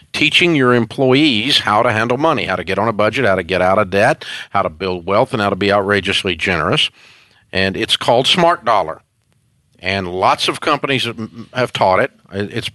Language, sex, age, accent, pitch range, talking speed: English, male, 50-69, American, 105-135 Hz, 200 wpm